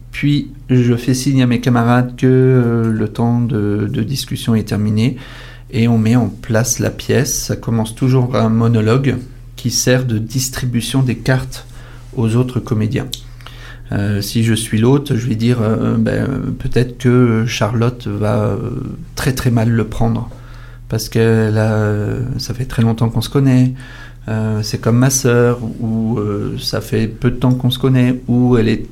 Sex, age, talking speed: male, 40-59, 180 wpm